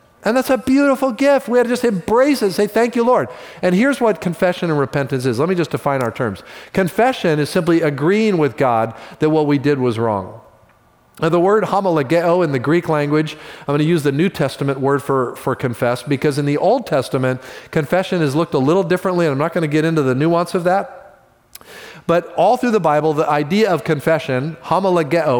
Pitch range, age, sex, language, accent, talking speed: 150-205 Hz, 40-59, male, English, American, 215 wpm